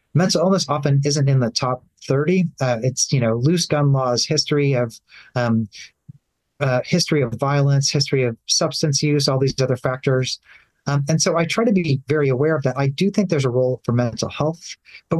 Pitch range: 130-155 Hz